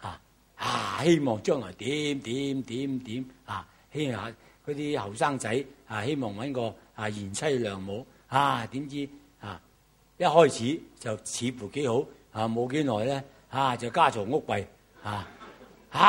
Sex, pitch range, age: male, 125-190 Hz, 60-79